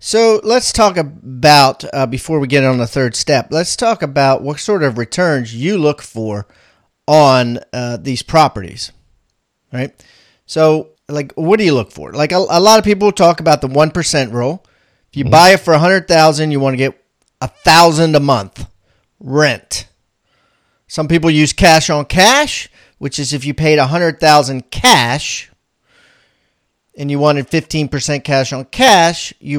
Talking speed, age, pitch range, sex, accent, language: 175 wpm, 40-59, 125-155 Hz, male, American, English